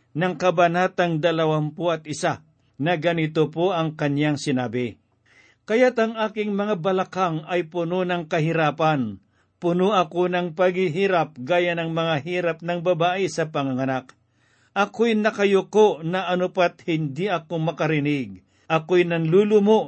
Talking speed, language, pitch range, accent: 120 wpm, Filipino, 150-190 Hz, native